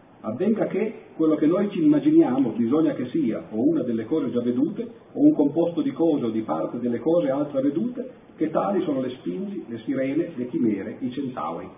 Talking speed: 200 wpm